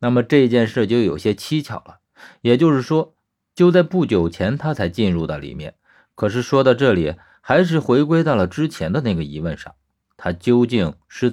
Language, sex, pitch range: Chinese, male, 100-145 Hz